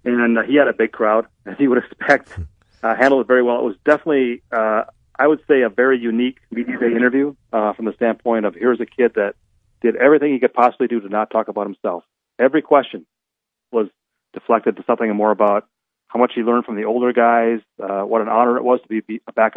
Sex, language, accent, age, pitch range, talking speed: male, English, American, 40-59, 110-125 Hz, 225 wpm